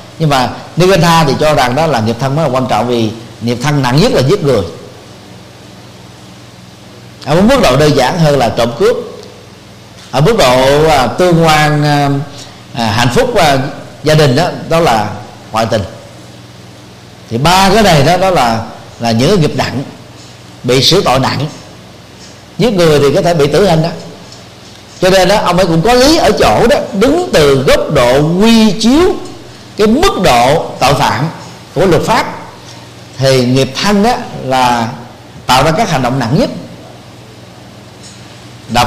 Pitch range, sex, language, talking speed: 120-195 Hz, male, Vietnamese, 165 wpm